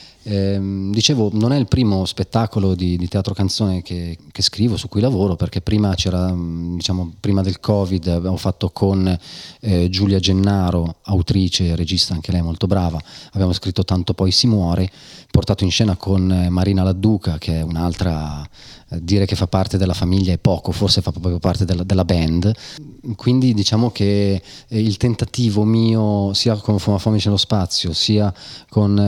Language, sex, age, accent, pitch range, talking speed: Italian, male, 30-49, native, 90-105 Hz, 165 wpm